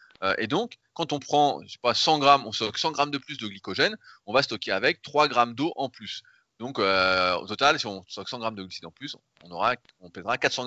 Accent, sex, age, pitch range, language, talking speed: French, male, 20-39, 105-135 Hz, French, 230 wpm